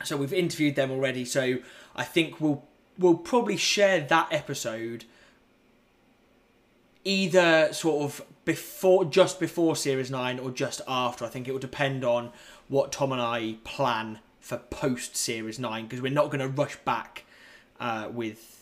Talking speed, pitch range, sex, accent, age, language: 160 wpm, 115-135 Hz, male, British, 20-39, English